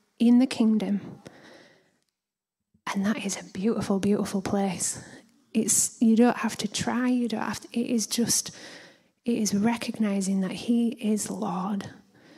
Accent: British